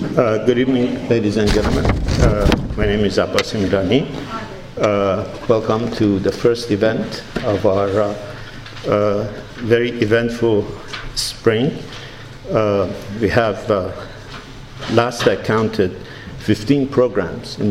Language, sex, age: English, male, 50-69